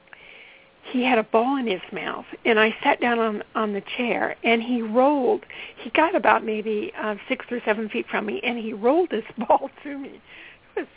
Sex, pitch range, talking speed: female, 215-255 Hz, 210 wpm